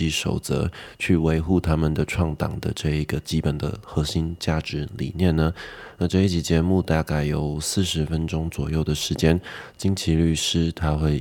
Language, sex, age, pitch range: Chinese, male, 20-39, 75-90 Hz